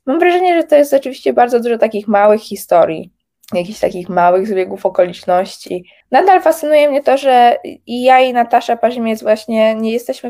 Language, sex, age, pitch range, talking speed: Polish, female, 20-39, 180-225 Hz, 170 wpm